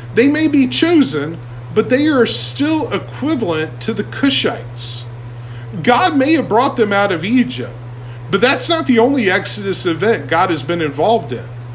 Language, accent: English, American